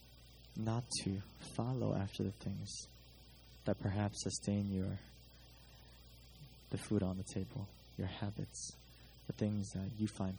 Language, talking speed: English, 125 wpm